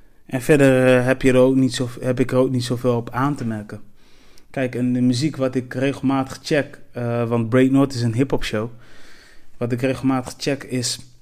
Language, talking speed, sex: Dutch, 210 wpm, male